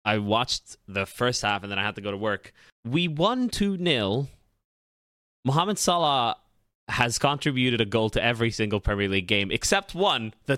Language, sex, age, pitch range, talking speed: English, male, 20-39, 105-130 Hz, 175 wpm